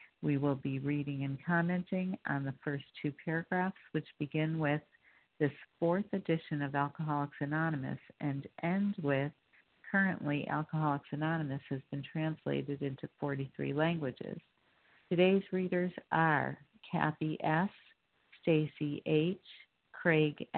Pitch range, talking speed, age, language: 145-170 Hz, 115 wpm, 50-69, English